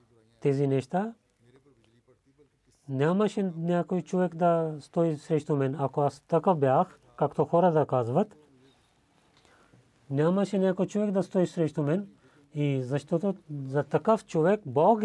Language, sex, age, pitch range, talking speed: Bulgarian, male, 40-59, 130-165 Hz, 120 wpm